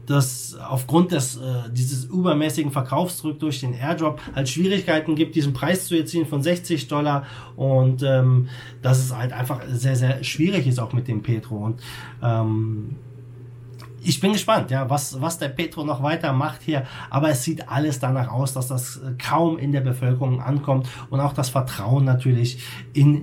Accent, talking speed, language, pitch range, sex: German, 175 wpm, German, 125-155 Hz, male